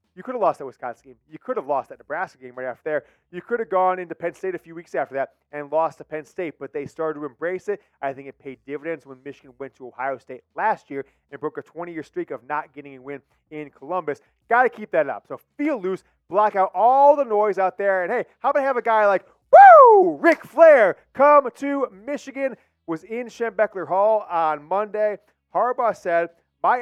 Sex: male